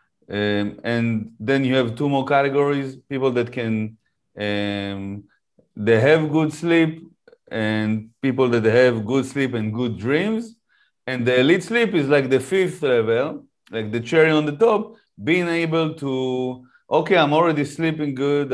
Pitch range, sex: 120-150 Hz, male